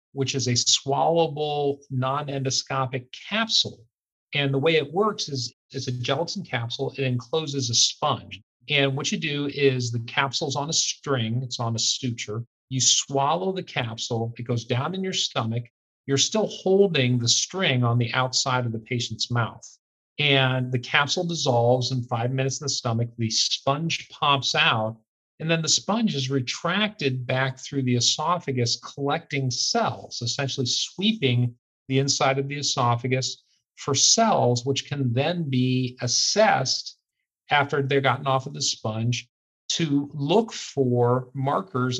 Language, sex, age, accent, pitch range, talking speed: English, male, 40-59, American, 120-145 Hz, 155 wpm